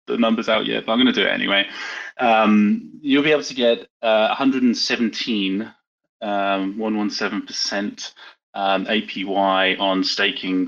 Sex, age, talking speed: male, 20-39, 140 wpm